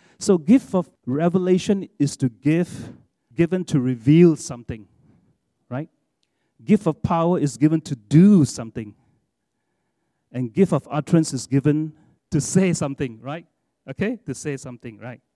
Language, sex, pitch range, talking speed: English, male, 120-170 Hz, 135 wpm